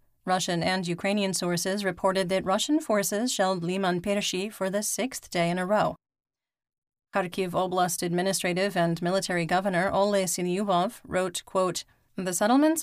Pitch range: 180-215 Hz